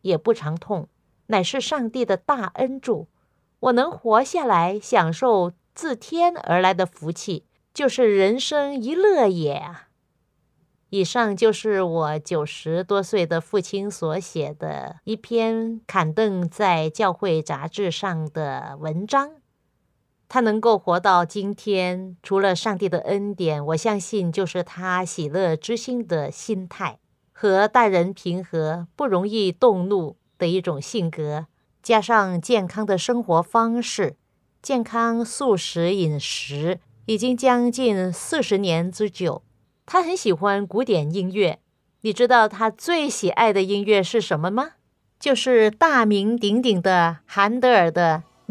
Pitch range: 175-230 Hz